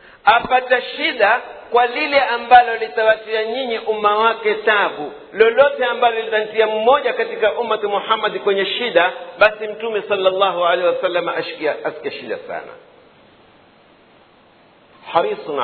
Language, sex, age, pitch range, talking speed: Swahili, male, 50-69, 185-250 Hz, 115 wpm